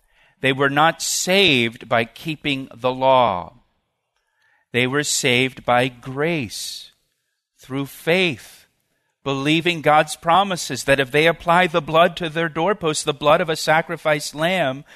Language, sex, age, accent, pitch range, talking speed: English, male, 50-69, American, 130-165 Hz, 130 wpm